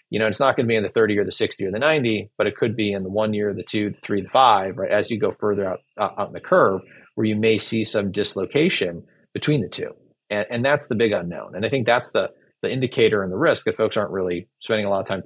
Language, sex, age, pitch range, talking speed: English, male, 30-49, 105-125 Hz, 290 wpm